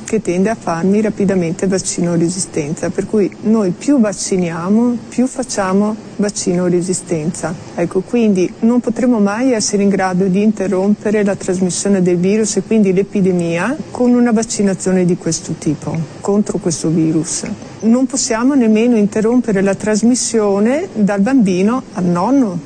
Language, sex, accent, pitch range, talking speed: Italian, female, native, 180-225 Hz, 140 wpm